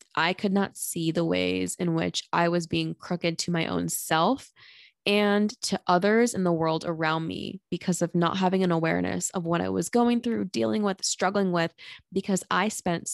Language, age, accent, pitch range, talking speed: English, 20-39, American, 165-190 Hz, 195 wpm